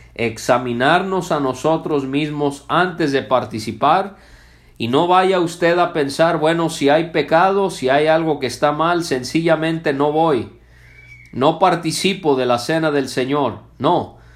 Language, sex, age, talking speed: Spanish, male, 50-69, 140 wpm